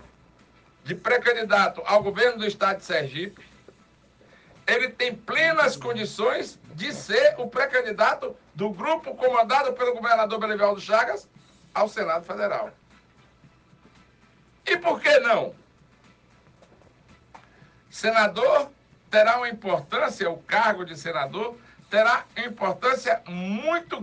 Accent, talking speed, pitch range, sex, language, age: Brazilian, 100 wpm, 185-250 Hz, male, Portuguese, 60-79